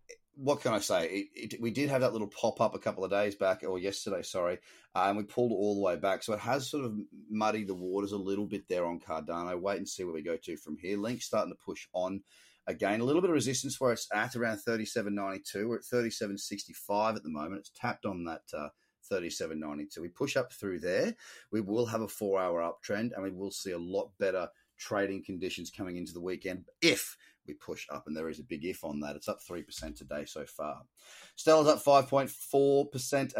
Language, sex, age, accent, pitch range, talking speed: English, male, 30-49, Australian, 100-140 Hz, 225 wpm